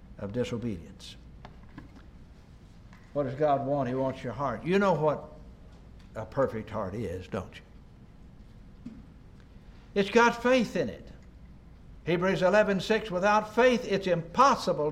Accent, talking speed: American, 130 wpm